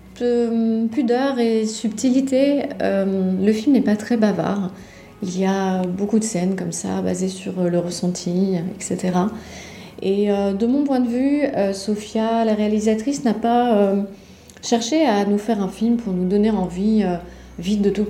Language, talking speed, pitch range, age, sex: French, 170 wpm, 190-230 Hz, 30-49, female